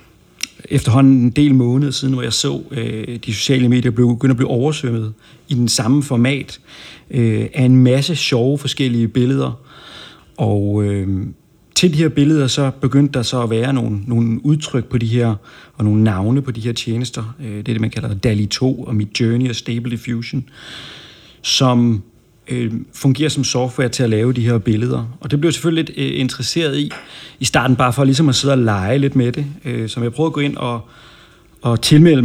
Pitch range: 115-140 Hz